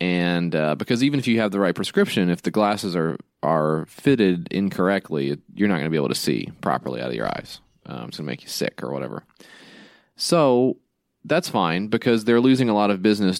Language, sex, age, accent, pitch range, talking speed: English, male, 30-49, American, 85-120 Hz, 220 wpm